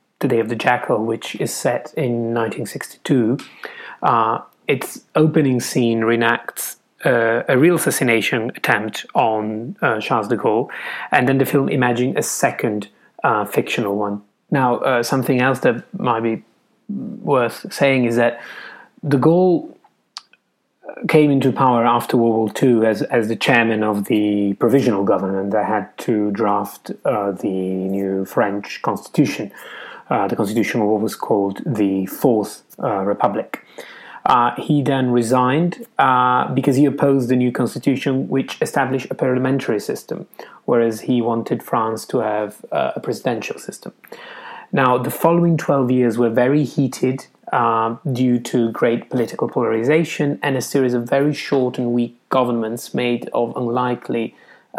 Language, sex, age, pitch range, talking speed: English, male, 30-49, 115-140 Hz, 150 wpm